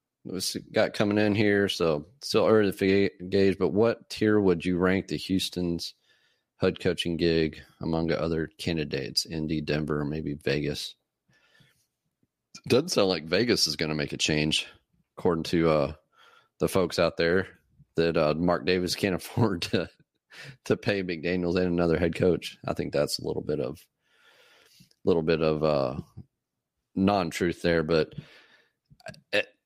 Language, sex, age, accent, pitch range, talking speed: English, male, 30-49, American, 80-95 Hz, 160 wpm